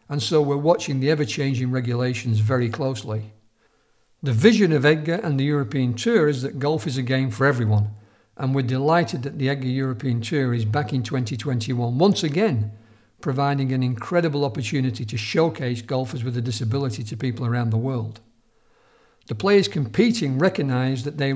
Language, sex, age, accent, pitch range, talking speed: English, male, 50-69, British, 120-150 Hz, 170 wpm